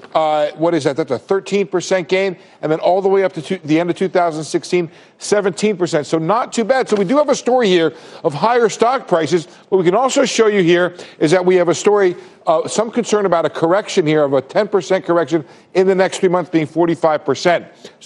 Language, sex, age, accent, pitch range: Korean, male, 50-69, American, 155-200 Hz